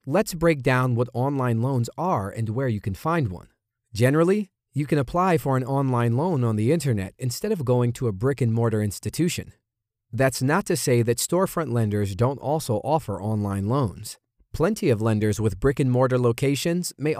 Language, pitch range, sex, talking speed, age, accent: English, 110-150 Hz, male, 190 wpm, 40-59, American